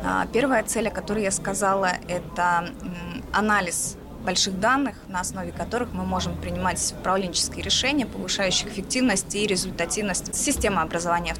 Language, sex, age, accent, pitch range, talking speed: Russian, female, 20-39, native, 180-225 Hz, 125 wpm